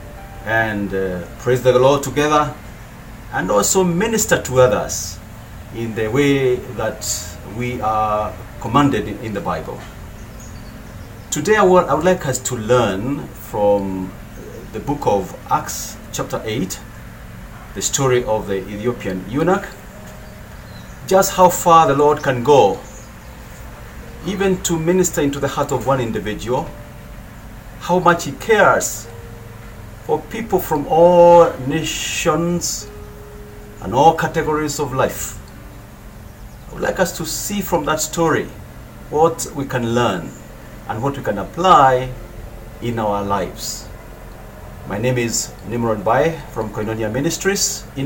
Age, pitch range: 40-59, 105-150 Hz